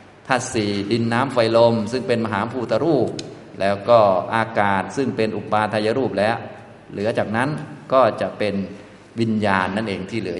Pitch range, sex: 100-130 Hz, male